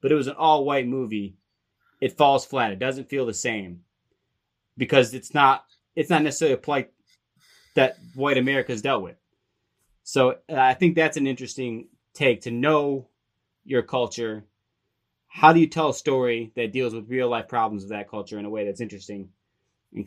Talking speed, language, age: 185 wpm, English, 20-39